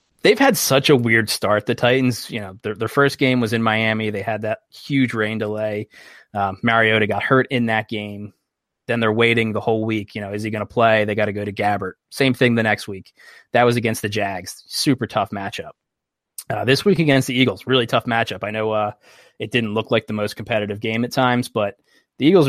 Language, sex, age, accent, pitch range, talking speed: English, male, 20-39, American, 105-120 Hz, 230 wpm